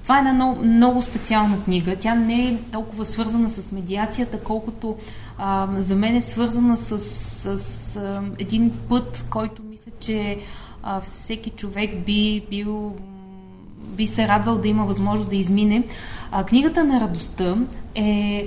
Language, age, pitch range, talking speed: Bulgarian, 20-39, 185-225 Hz, 155 wpm